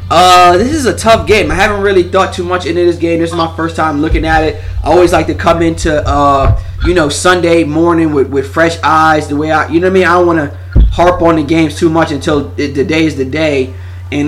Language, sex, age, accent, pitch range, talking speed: English, male, 20-39, American, 130-175 Hz, 265 wpm